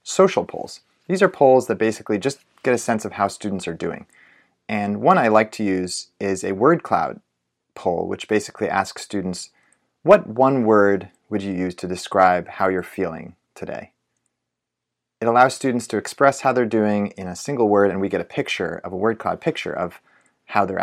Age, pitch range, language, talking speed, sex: 30-49, 95-120 Hz, English, 195 wpm, male